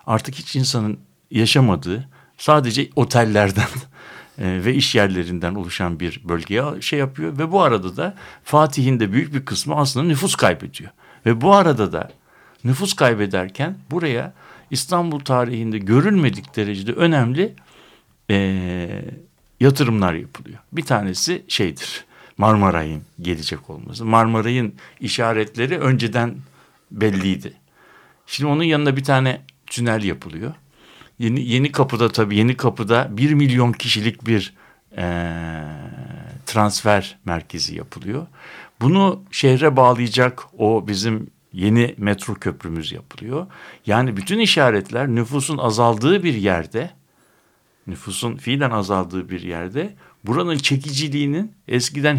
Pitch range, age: 100-140 Hz, 60-79